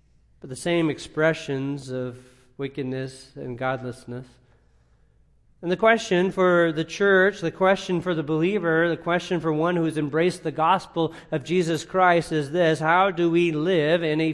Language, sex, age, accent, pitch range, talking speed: English, male, 40-59, American, 140-175 Hz, 160 wpm